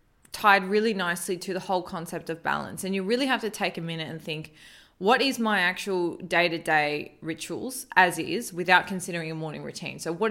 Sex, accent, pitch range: female, Australian, 165-195 Hz